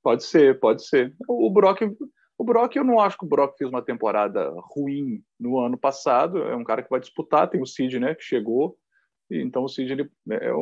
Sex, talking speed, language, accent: male, 220 wpm, Portuguese, Brazilian